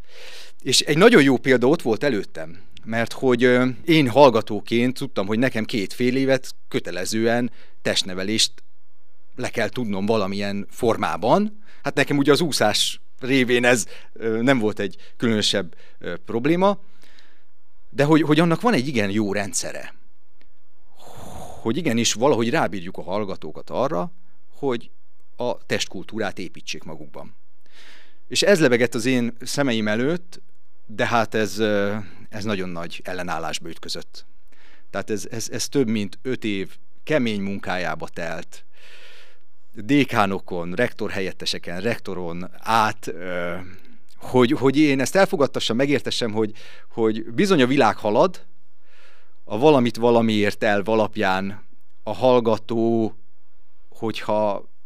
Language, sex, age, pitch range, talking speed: Hungarian, male, 30-49, 105-135 Hz, 120 wpm